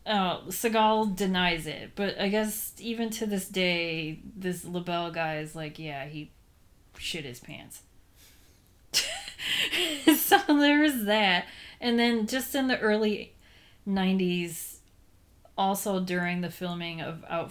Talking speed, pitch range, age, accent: 125 wpm, 150-175 Hz, 30-49, American